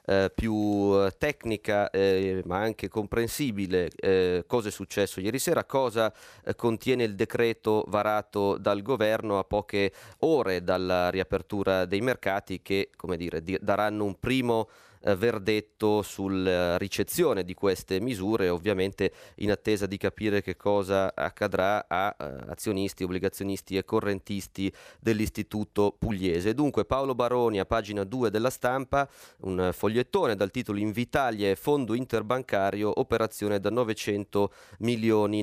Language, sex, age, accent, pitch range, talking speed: Italian, male, 30-49, native, 100-120 Hz, 120 wpm